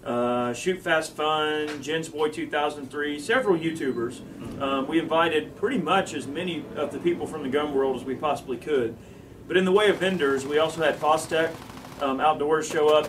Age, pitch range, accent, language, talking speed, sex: 40-59, 135-160 Hz, American, English, 190 wpm, male